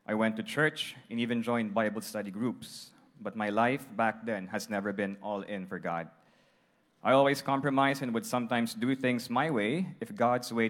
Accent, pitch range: Filipino, 110-140 Hz